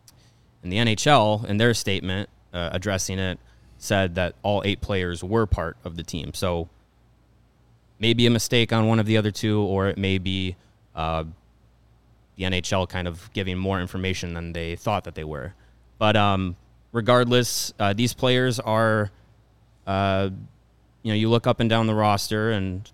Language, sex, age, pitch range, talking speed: English, male, 20-39, 95-110 Hz, 170 wpm